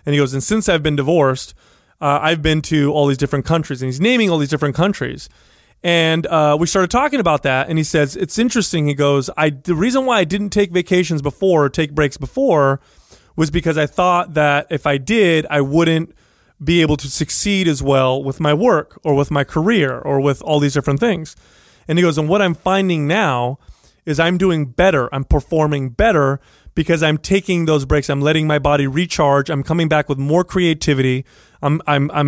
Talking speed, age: 205 wpm, 30-49